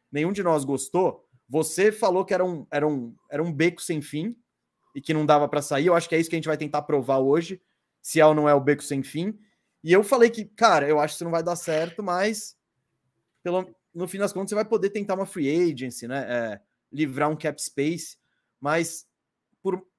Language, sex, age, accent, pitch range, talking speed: Portuguese, male, 20-39, Brazilian, 150-205 Hz, 230 wpm